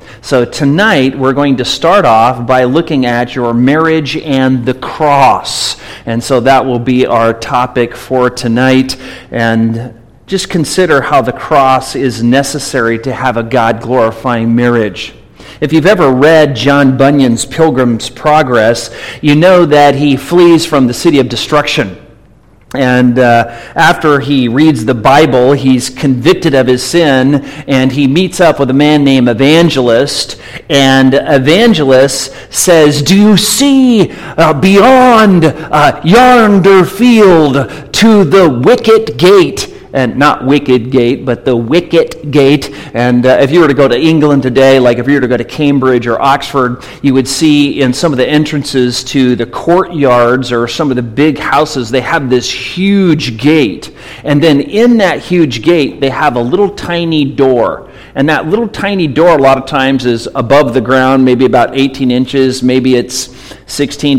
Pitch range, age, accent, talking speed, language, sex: 125-155 Hz, 40-59, American, 160 wpm, English, male